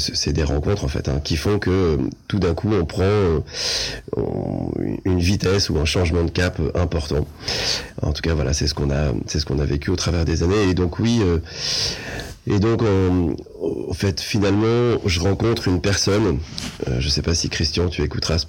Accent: French